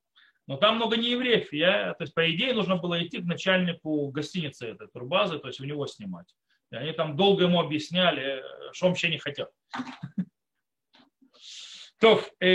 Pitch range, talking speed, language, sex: 155-205 Hz, 165 wpm, Russian, male